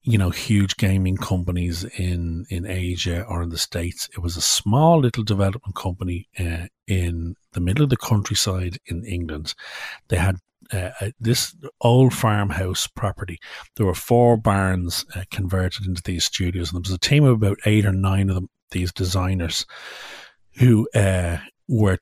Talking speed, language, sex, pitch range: 170 wpm, English, male, 90-115 Hz